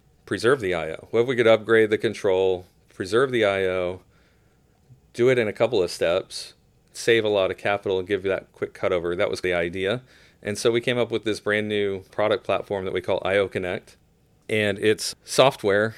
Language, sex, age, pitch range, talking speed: English, male, 40-59, 90-110 Hz, 205 wpm